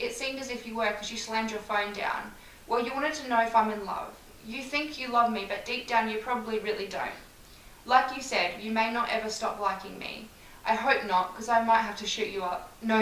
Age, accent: 10-29, Australian